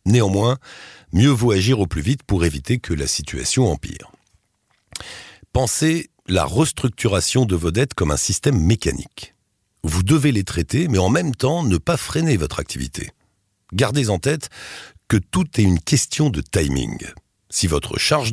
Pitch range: 85-125 Hz